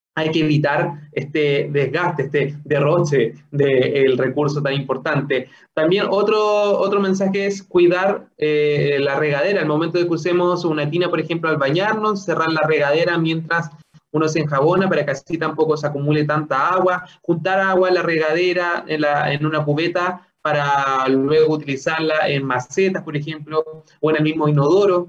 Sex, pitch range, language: male, 150-180 Hz, Spanish